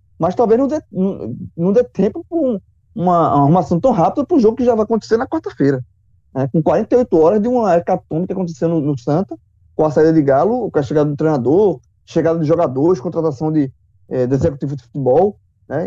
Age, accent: 20-39, Brazilian